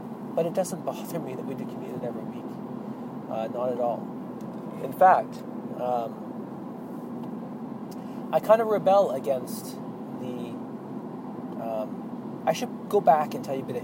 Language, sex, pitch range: English, male, 145-240 Hz